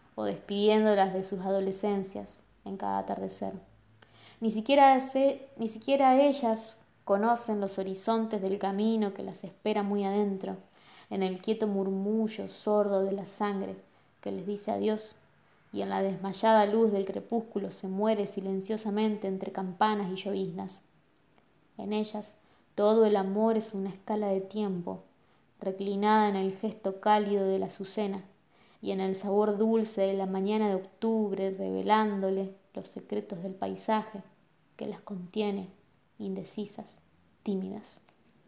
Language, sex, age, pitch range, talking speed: Spanish, female, 20-39, 190-215 Hz, 135 wpm